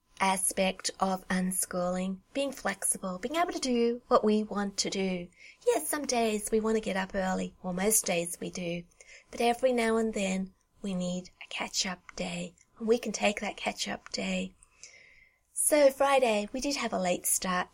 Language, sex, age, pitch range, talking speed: English, female, 30-49, 185-235 Hz, 190 wpm